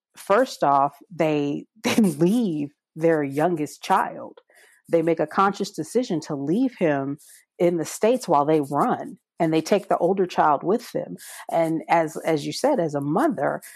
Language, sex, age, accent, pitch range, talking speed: English, female, 40-59, American, 155-200 Hz, 165 wpm